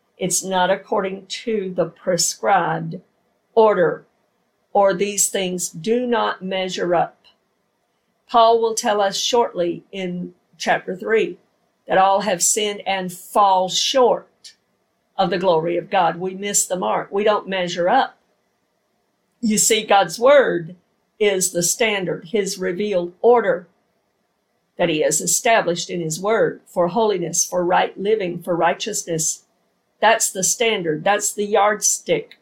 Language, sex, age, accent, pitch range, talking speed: English, female, 50-69, American, 180-225 Hz, 135 wpm